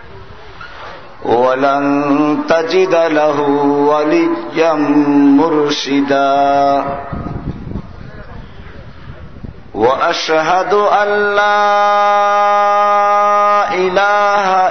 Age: 50-69